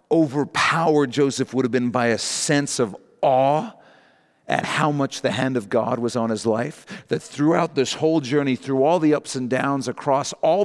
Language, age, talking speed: English, 40-59, 190 wpm